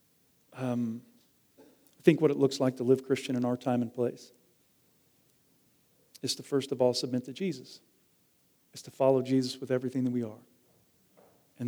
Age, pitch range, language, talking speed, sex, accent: 40-59, 130-170 Hz, English, 170 wpm, male, American